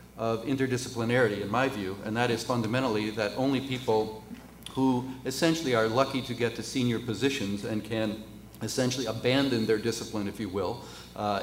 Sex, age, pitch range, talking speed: male, 40-59, 105-125 Hz, 165 wpm